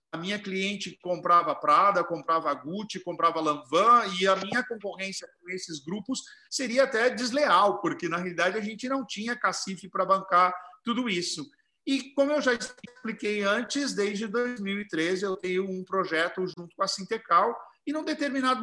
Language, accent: Portuguese, Brazilian